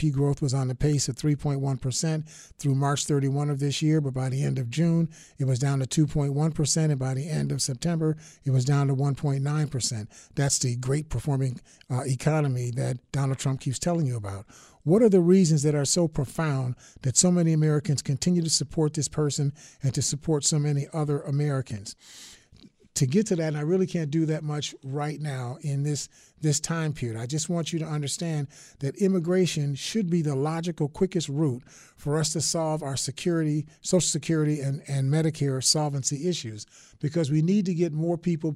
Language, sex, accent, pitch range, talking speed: English, male, American, 140-160 Hz, 195 wpm